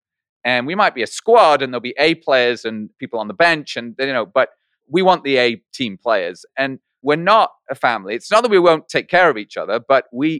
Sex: male